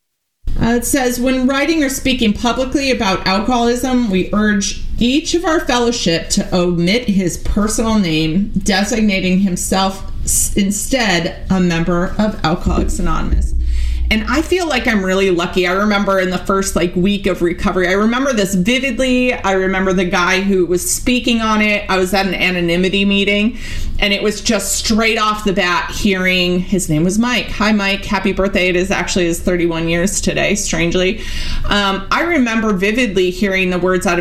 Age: 30-49